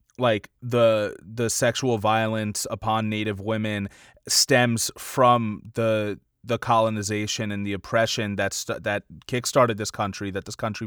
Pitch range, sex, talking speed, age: 105-125 Hz, male, 140 wpm, 20-39